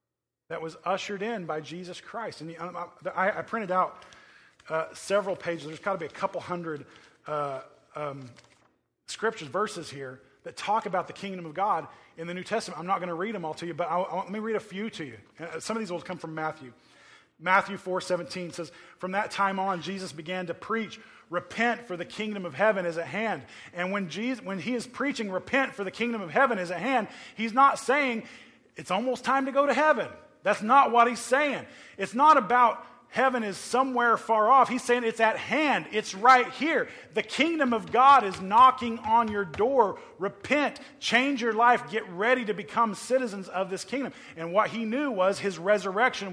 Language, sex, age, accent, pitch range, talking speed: English, male, 20-39, American, 180-240 Hz, 205 wpm